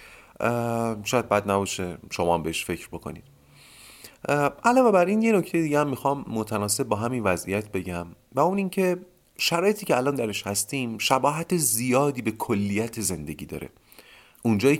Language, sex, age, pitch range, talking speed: Persian, male, 40-59, 95-130 Hz, 145 wpm